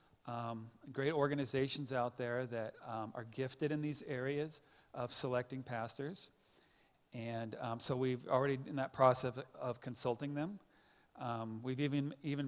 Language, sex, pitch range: English, male, 120-140 Hz